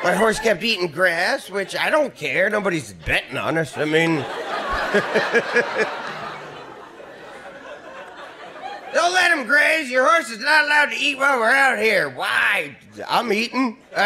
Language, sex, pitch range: English, male, 165-230 Hz